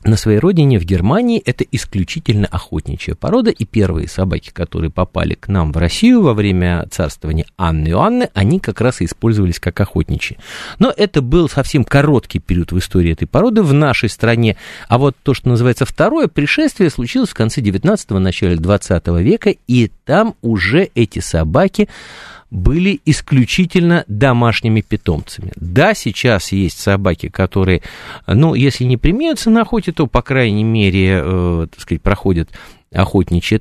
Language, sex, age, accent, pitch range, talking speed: Russian, male, 50-69, native, 90-135 Hz, 155 wpm